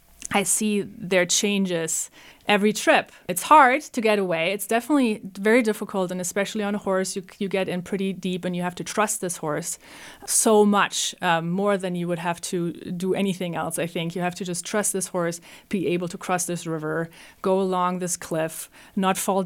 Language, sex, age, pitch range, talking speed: English, female, 30-49, 175-205 Hz, 205 wpm